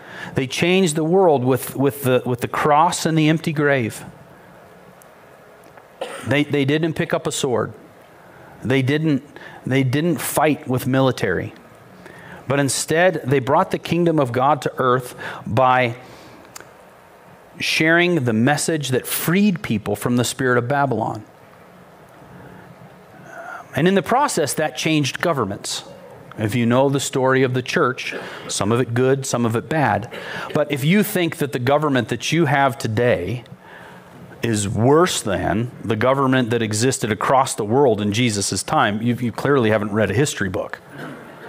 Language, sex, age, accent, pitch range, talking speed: English, male, 40-59, American, 120-155 Hz, 150 wpm